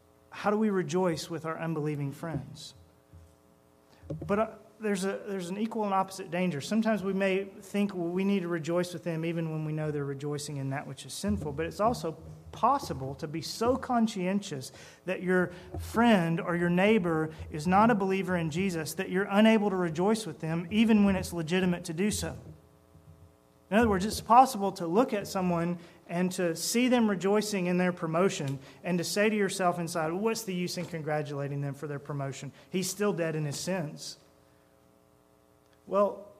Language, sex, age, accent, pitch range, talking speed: English, male, 30-49, American, 140-195 Hz, 185 wpm